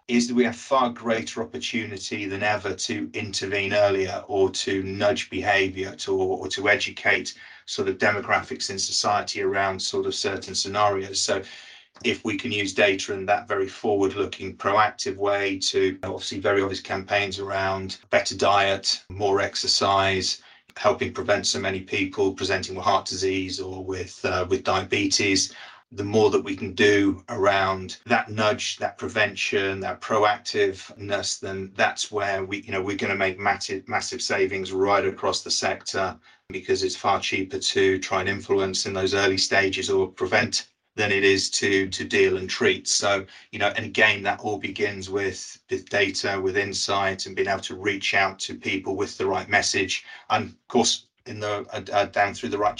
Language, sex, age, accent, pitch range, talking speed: English, male, 30-49, British, 95-115 Hz, 175 wpm